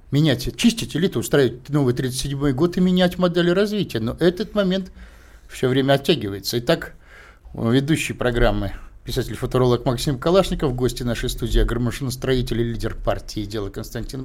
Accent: native